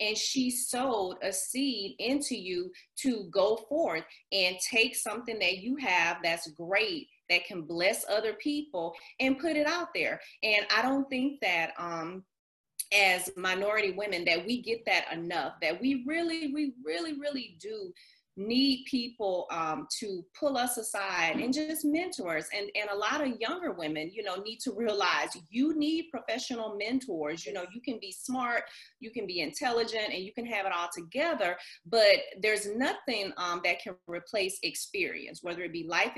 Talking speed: 175 wpm